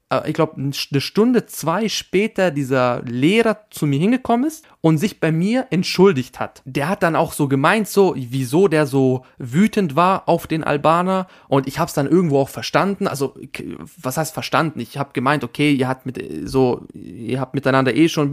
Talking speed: 195 wpm